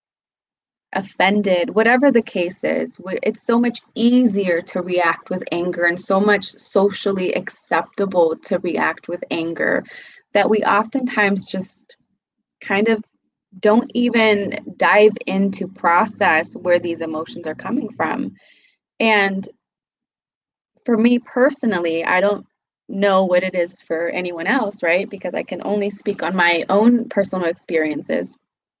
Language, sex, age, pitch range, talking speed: English, female, 20-39, 175-220 Hz, 130 wpm